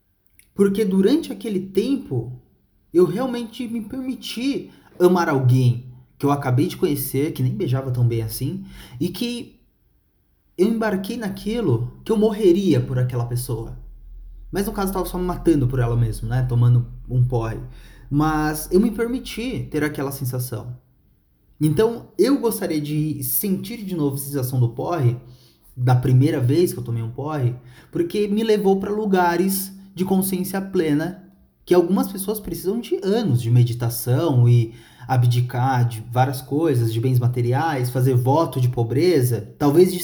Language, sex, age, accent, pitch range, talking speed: Portuguese, male, 20-39, Brazilian, 125-185 Hz, 155 wpm